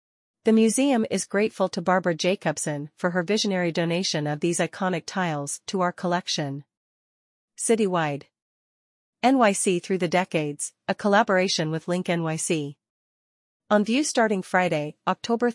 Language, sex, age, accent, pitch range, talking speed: English, female, 40-59, American, 160-195 Hz, 125 wpm